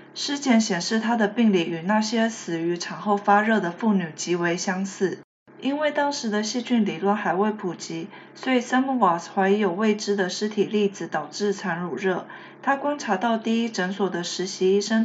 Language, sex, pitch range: Chinese, female, 185-225 Hz